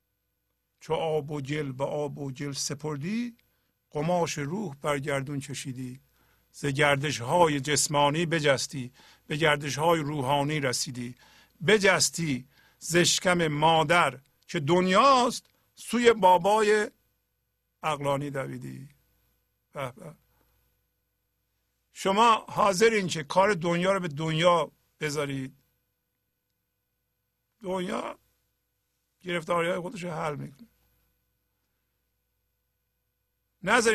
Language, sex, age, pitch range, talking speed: Persian, male, 50-69, 140-200 Hz, 90 wpm